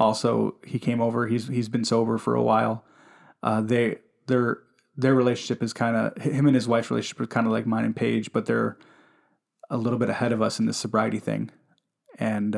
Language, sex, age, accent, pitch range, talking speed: English, male, 20-39, American, 110-125 Hz, 210 wpm